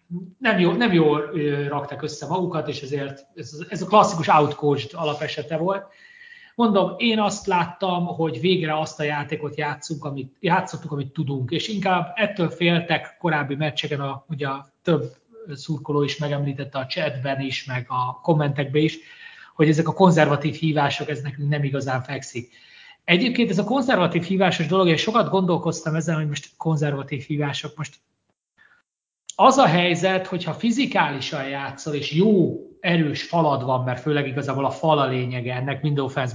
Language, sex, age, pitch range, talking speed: Hungarian, male, 30-49, 145-180 Hz, 155 wpm